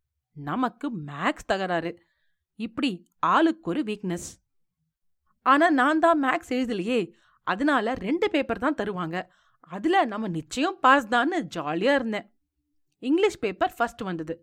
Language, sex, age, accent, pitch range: Tamil, female, 30-49, native, 185-290 Hz